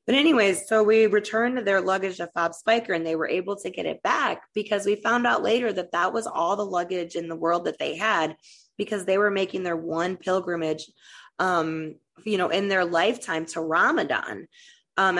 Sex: female